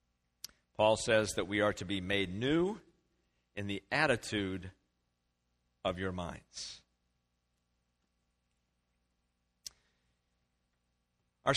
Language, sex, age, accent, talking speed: English, male, 50-69, American, 85 wpm